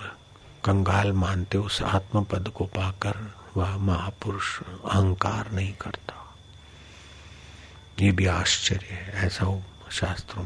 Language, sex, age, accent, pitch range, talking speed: Hindi, male, 50-69, native, 90-100 Hz, 110 wpm